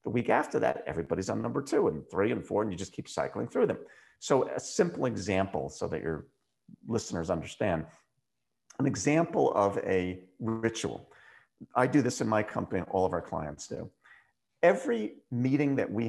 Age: 40-59